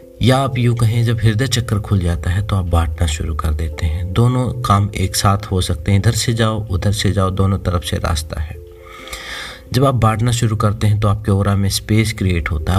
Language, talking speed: Hindi, 230 wpm